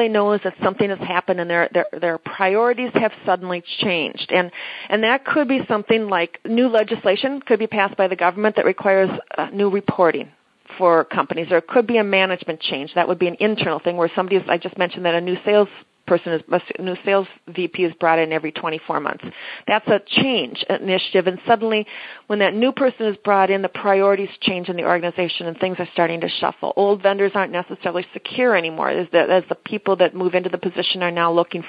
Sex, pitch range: female, 180-215 Hz